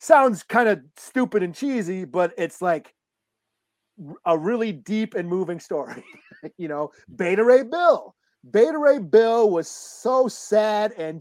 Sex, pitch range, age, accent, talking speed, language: male, 155-220 Hz, 40-59, American, 145 wpm, English